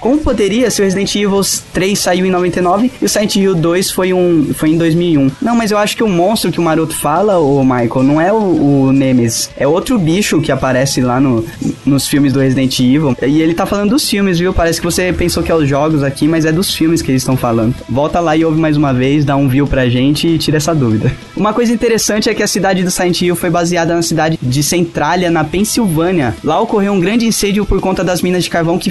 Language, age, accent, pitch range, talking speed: Portuguese, 10-29, Brazilian, 145-195 Hz, 250 wpm